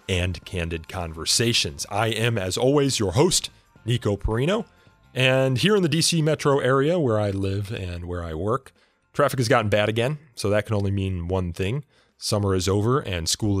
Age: 30-49